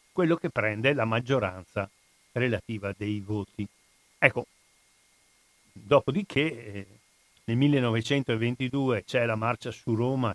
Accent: native